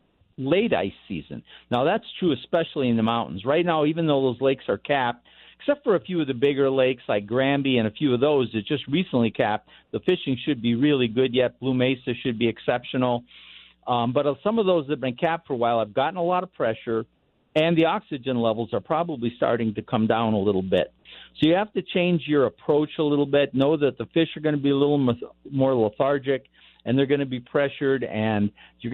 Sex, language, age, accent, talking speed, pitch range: male, English, 50-69, American, 230 wpm, 120-155 Hz